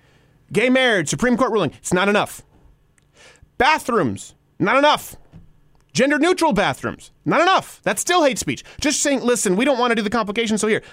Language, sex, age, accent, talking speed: English, male, 30-49, American, 170 wpm